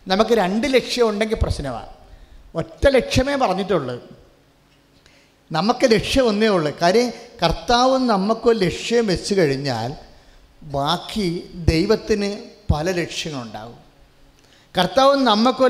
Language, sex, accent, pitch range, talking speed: English, male, Indian, 175-235 Hz, 50 wpm